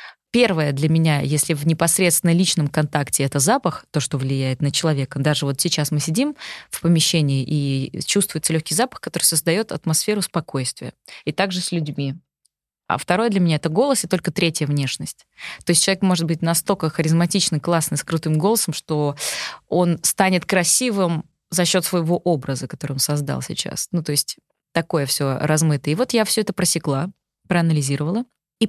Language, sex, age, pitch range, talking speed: Russian, female, 20-39, 150-195 Hz, 170 wpm